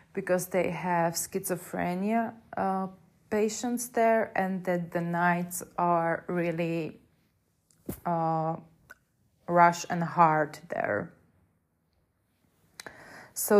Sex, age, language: female, 20-39, Czech